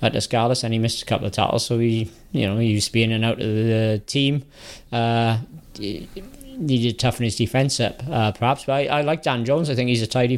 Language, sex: English, male